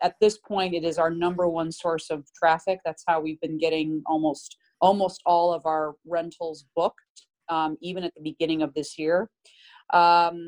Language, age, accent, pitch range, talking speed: English, 30-49, American, 155-175 Hz, 185 wpm